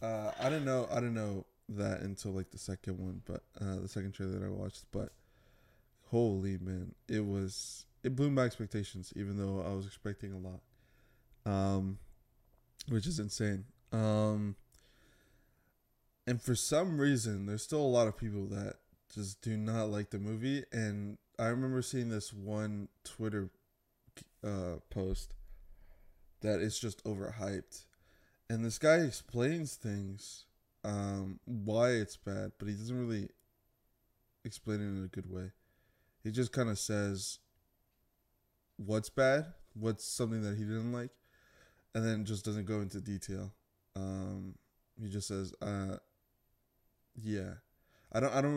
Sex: male